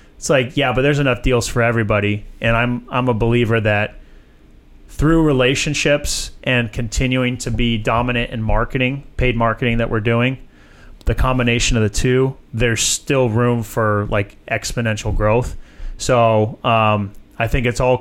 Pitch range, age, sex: 110-125 Hz, 30-49, male